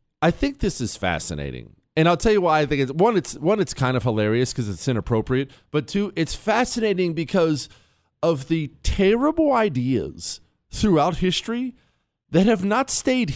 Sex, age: male, 40-59